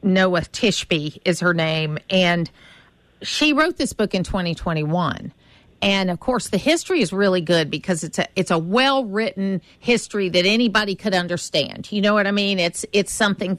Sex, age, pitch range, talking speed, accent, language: female, 50-69, 180-225 Hz, 170 wpm, American, English